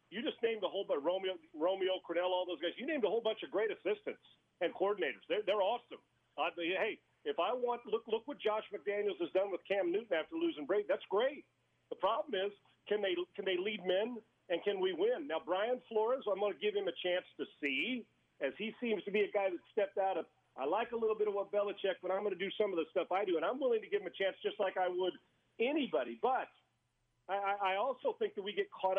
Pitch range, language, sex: 180-285 Hz, English, male